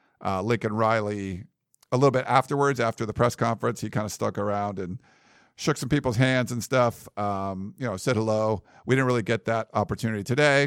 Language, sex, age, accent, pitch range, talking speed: English, male, 50-69, American, 100-125 Hz, 195 wpm